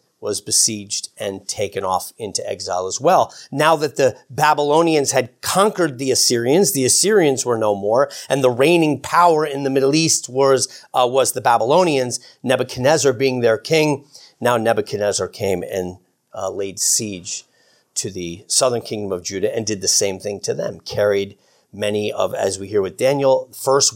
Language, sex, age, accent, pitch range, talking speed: English, male, 40-59, American, 120-170 Hz, 170 wpm